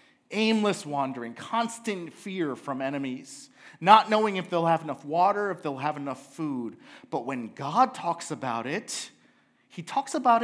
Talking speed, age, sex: 155 wpm, 40-59, male